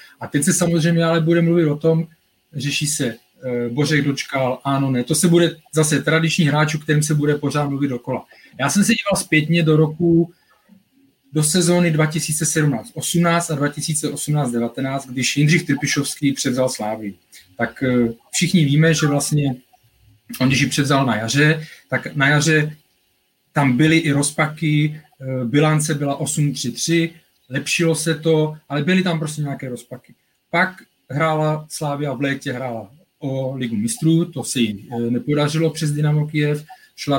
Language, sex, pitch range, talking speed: Czech, male, 130-155 Hz, 145 wpm